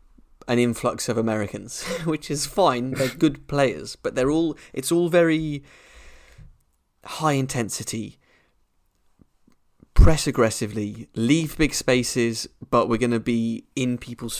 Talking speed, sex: 125 wpm, male